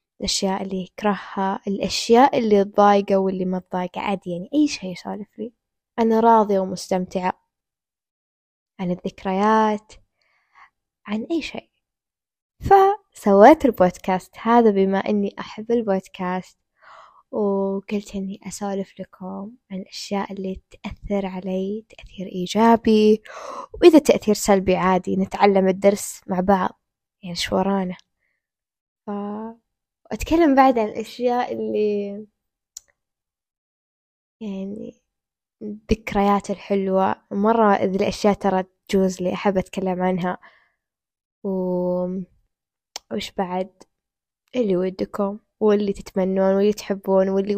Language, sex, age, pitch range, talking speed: Arabic, female, 10-29, 185-215 Hz, 100 wpm